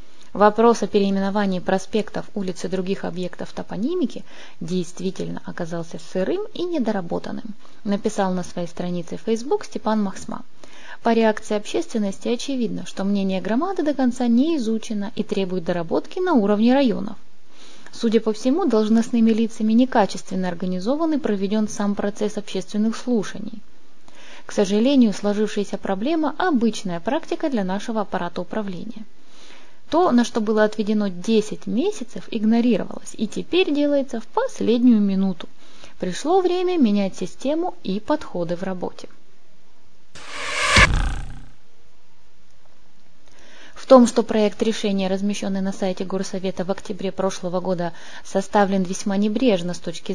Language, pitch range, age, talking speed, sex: Russian, 195-245 Hz, 20-39, 120 wpm, female